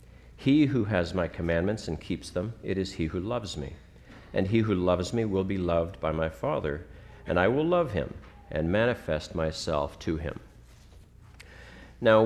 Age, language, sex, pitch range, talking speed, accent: 50-69, English, male, 85-115 Hz, 175 wpm, American